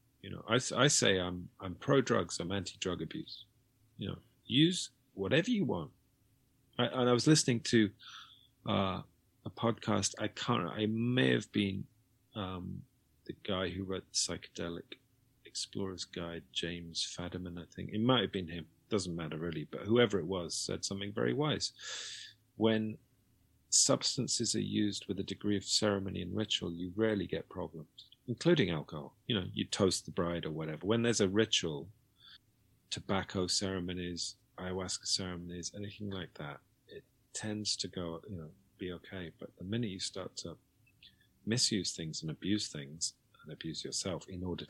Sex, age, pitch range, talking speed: male, 40-59, 90-110 Hz, 165 wpm